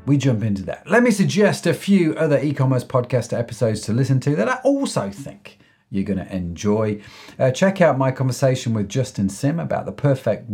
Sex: male